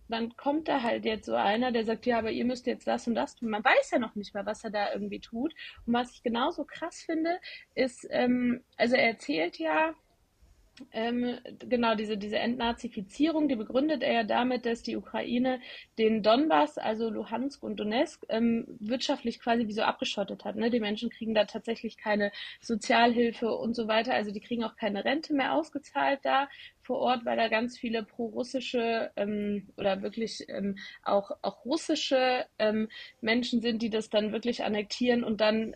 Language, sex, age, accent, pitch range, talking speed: German, female, 20-39, German, 215-255 Hz, 185 wpm